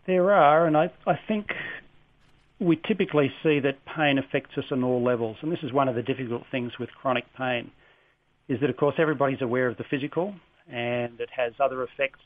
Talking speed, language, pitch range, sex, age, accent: 200 wpm, English, 120-145 Hz, male, 40-59, Australian